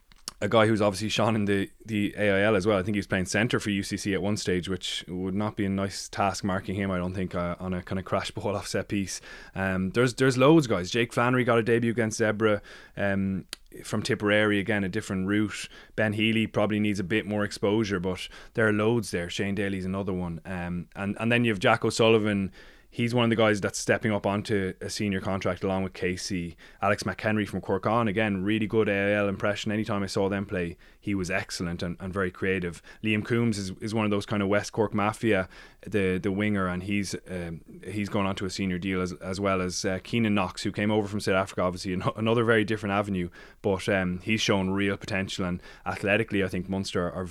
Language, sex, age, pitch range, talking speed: English, male, 20-39, 95-110 Hz, 225 wpm